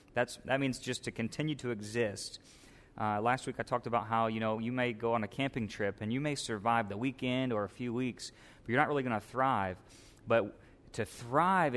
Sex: male